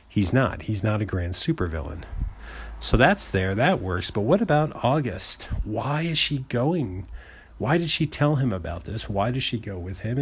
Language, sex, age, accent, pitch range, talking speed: English, male, 40-59, American, 90-125 Hz, 195 wpm